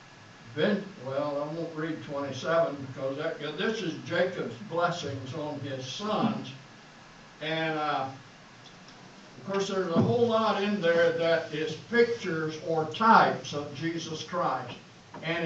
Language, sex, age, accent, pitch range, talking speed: English, male, 60-79, American, 150-200 Hz, 125 wpm